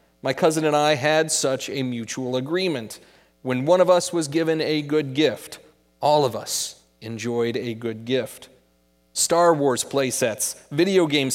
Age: 30-49